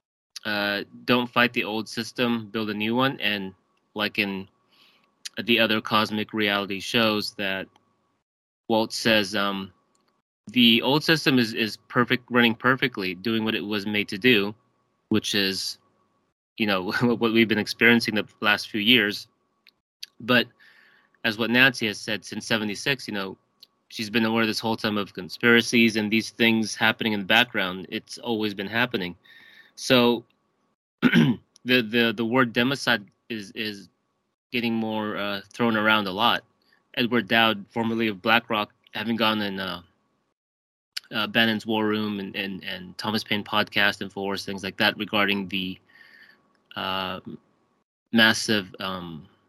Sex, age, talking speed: male, 20-39, 145 wpm